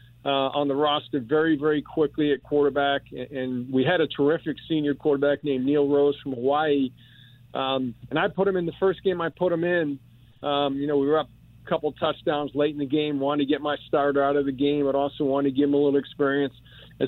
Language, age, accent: English, 50-69, American